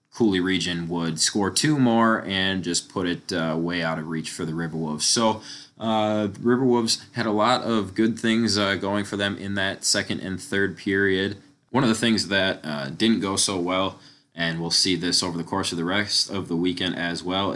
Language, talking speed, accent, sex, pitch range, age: English, 220 wpm, American, male, 85-105 Hz, 20-39